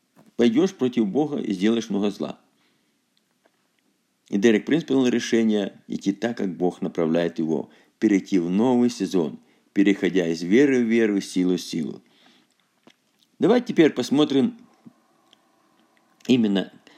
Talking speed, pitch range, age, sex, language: 120 wpm, 110-175 Hz, 50-69, male, Russian